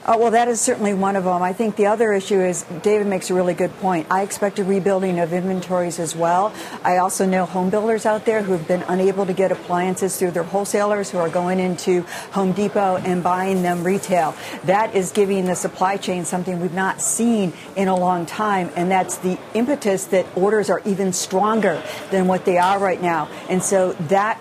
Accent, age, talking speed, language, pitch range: American, 50-69, 210 wpm, English, 180-205 Hz